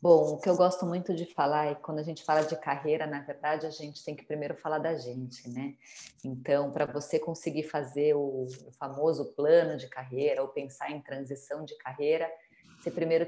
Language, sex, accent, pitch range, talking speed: Portuguese, female, Brazilian, 150-180 Hz, 205 wpm